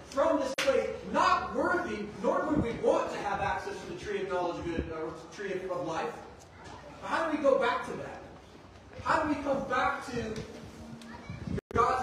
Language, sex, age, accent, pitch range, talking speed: English, male, 30-49, American, 230-295 Hz, 195 wpm